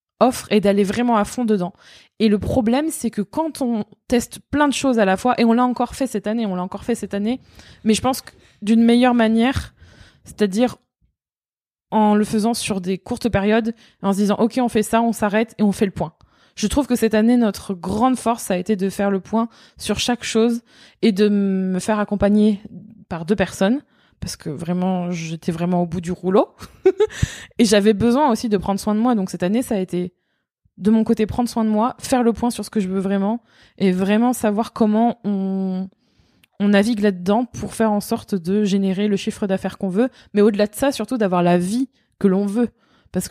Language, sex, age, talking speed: French, female, 20-39, 230 wpm